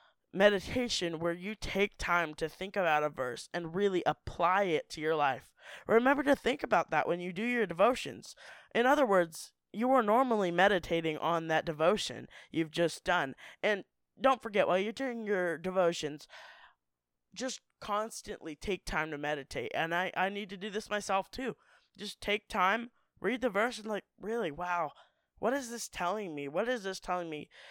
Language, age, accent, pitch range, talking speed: English, 20-39, American, 160-215 Hz, 180 wpm